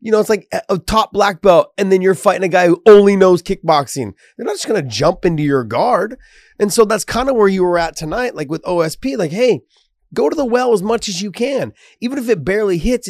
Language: English